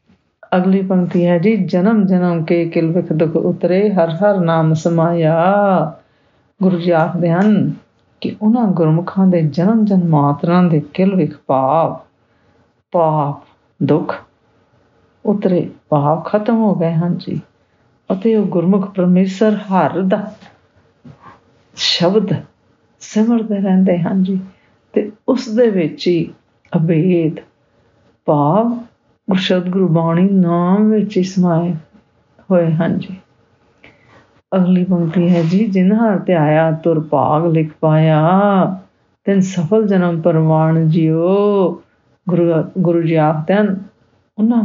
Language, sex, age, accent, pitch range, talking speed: English, female, 50-69, Indian, 160-195 Hz, 75 wpm